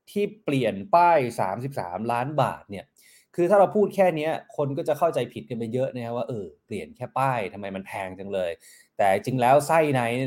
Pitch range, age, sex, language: 125-160 Hz, 20-39, male, Thai